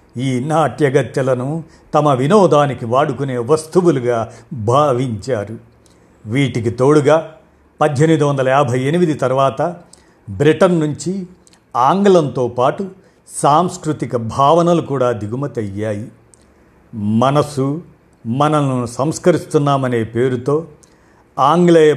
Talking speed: 75 wpm